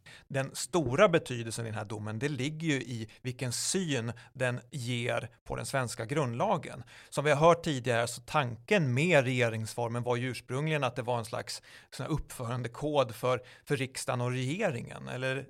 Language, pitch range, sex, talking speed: Swedish, 120-145 Hz, male, 170 wpm